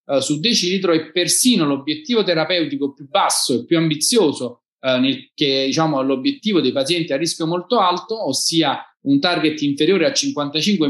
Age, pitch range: 30-49, 145-180 Hz